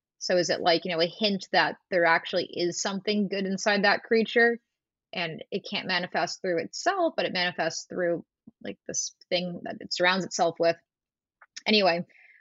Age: 20-39